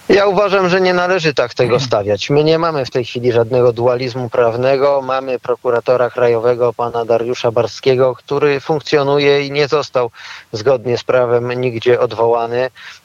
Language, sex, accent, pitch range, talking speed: Polish, male, native, 120-135 Hz, 150 wpm